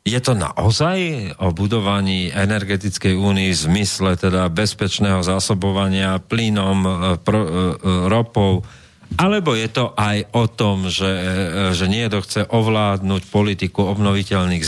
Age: 40-59